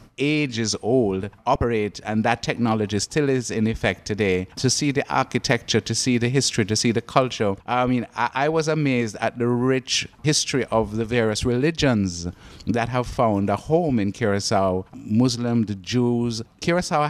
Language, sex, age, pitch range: English, male, 50-69, 105-125 Hz